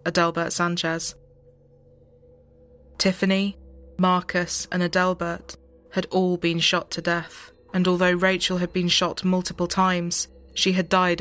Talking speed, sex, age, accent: 125 wpm, female, 20-39, British